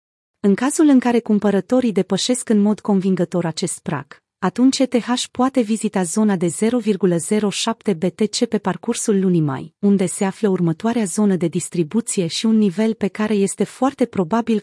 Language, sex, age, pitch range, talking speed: Romanian, female, 30-49, 180-225 Hz, 155 wpm